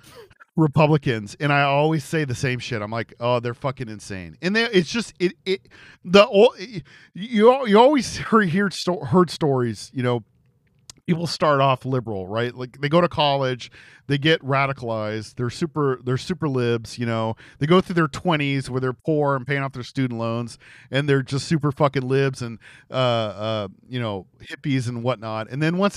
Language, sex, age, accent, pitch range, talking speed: English, male, 40-59, American, 125-170 Hz, 190 wpm